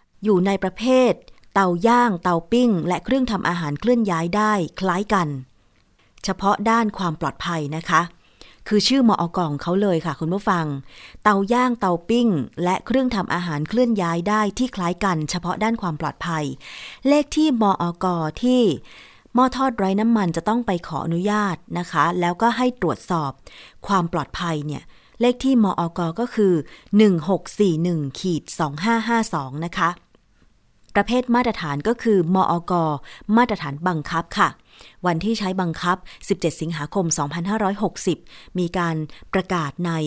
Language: Thai